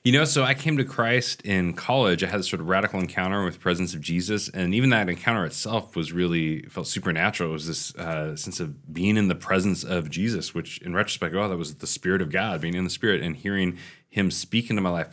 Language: English